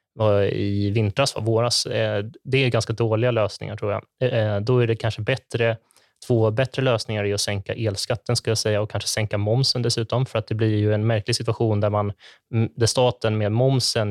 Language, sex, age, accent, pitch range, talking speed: Swedish, male, 20-39, native, 105-120 Hz, 190 wpm